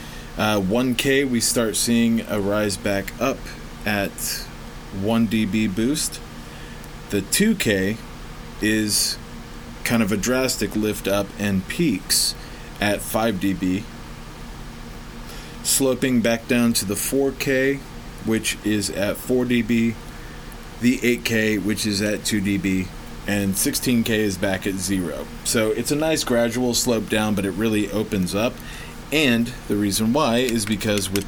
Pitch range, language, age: 95-115 Hz, English, 30-49